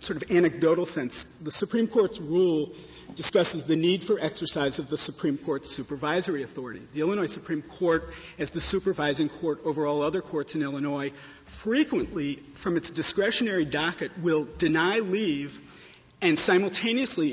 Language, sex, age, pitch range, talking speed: English, male, 50-69, 145-180 Hz, 150 wpm